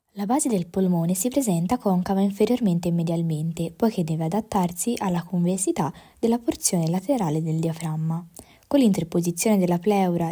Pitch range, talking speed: 170-205 Hz, 140 wpm